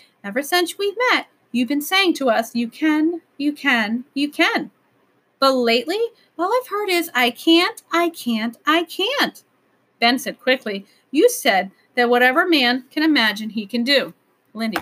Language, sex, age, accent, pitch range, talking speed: English, female, 30-49, American, 215-290 Hz, 165 wpm